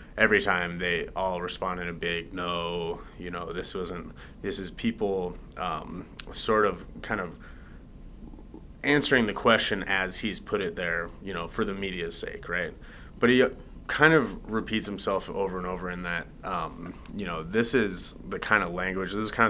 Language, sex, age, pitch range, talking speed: English, male, 30-49, 85-100 Hz, 180 wpm